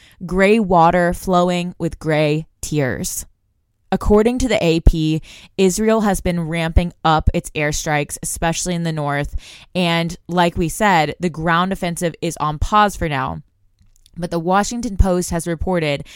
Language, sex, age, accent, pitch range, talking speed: English, female, 20-39, American, 150-180 Hz, 145 wpm